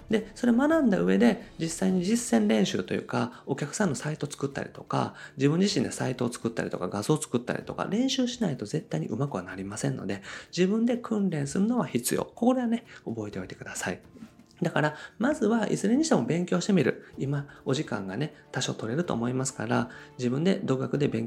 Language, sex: Japanese, male